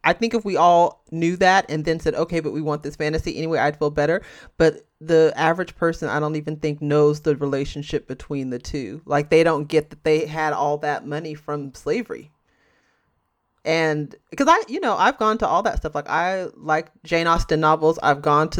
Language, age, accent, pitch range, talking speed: English, 30-49, American, 155-215 Hz, 215 wpm